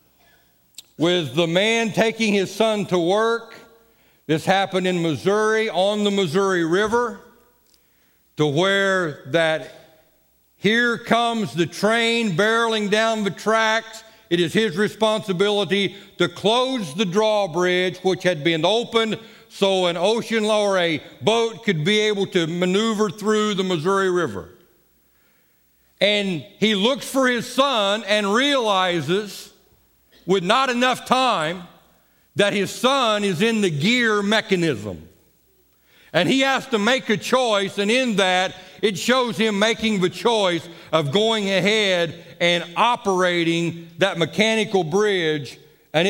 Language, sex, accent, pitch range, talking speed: English, male, American, 170-220 Hz, 130 wpm